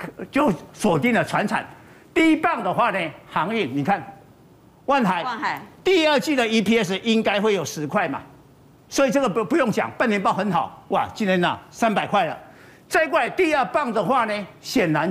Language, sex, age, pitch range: Chinese, male, 50-69, 200-270 Hz